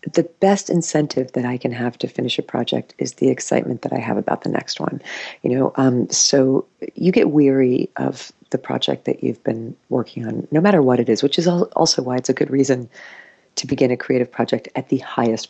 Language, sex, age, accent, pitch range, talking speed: English, female, 40-59, American, 120-180 Hz, 220 wpm